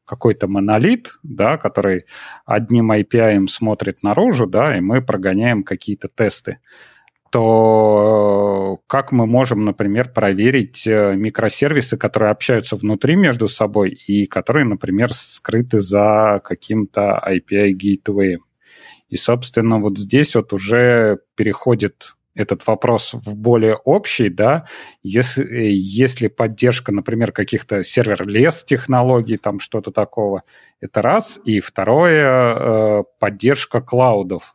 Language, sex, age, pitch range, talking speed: Russian, male, 30-49, 105-120 Hz, 110 wpm